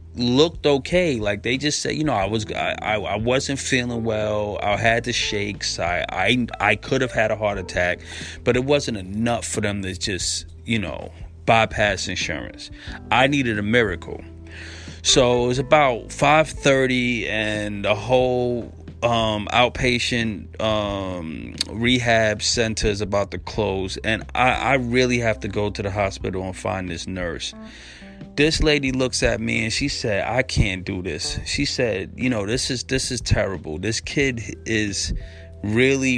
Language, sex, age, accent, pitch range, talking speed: English, male, 30-49, American, 95-125 Hz, 170 wpm